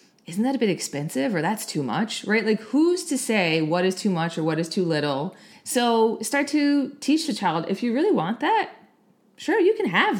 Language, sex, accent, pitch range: English, female, American, 170-240 Hz